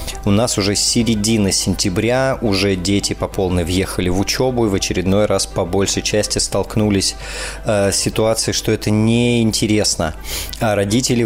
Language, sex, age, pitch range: Russian, male, 20-39, 95-115 Hz